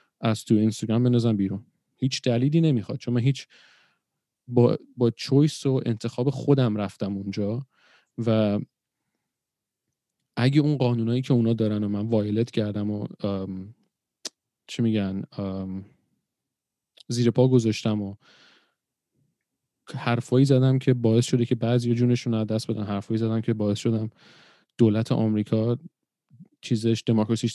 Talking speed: 125 wpm